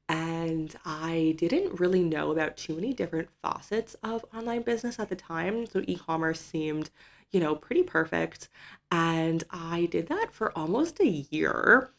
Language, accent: English, American